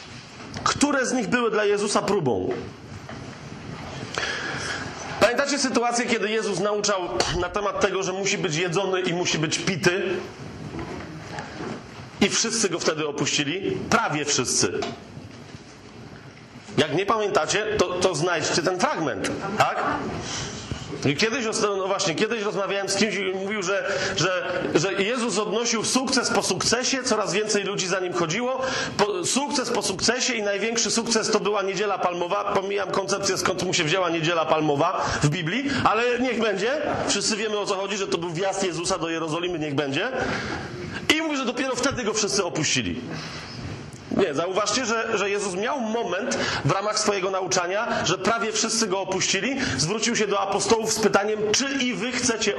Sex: male